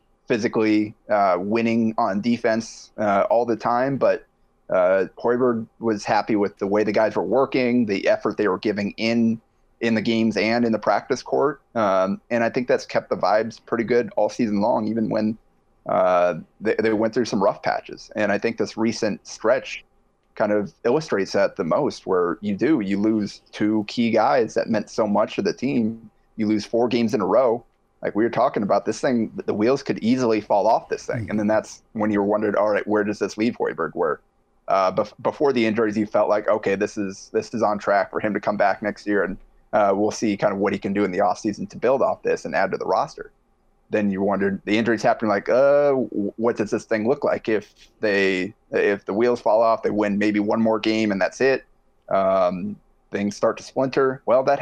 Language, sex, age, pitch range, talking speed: English, male, 30-49, 105-115 Hz, 225 wpm